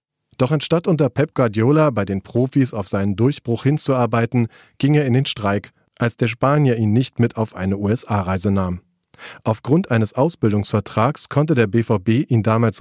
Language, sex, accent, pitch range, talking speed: German, male, German, 100-130 Hz, 165 wpm